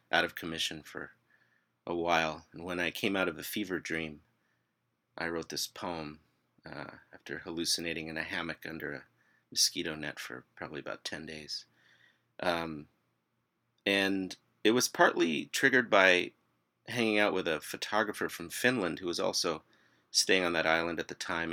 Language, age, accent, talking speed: English, 30-49, American, 160 wpm